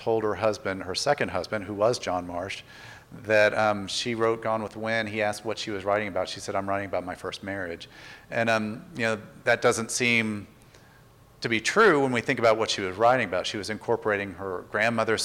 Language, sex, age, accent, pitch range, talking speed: English, male, 40-59, American, 100-115 Hz, 220 wpm